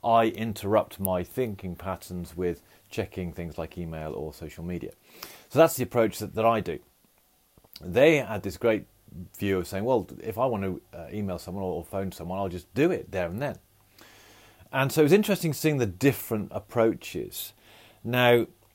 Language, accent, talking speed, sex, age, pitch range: English, British, 180 wpm, male, 30-49, 95-115 Hz